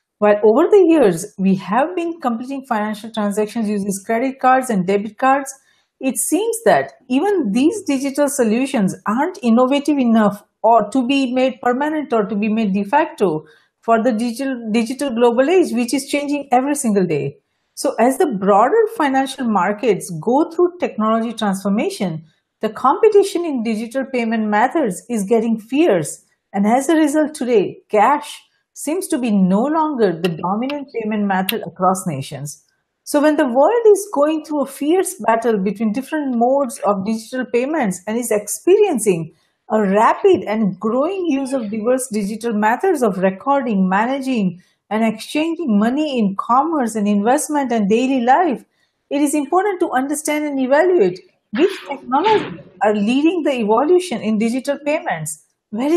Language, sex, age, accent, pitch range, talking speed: English, female, 50-69, Indian, 210-290 Hz, 155 wpm